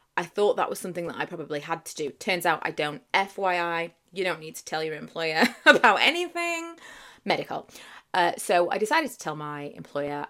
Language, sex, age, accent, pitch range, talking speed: English, female, 30-49, British, 155-195 Hz, 200 wpm